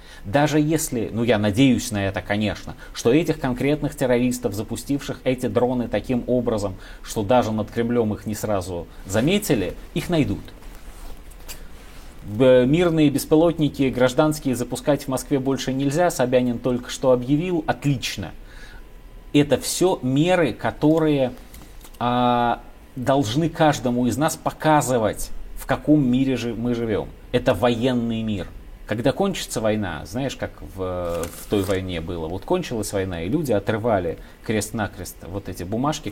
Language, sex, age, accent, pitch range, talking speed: Russian, male, 30-49, native, 100-140 Hz, 130 wpm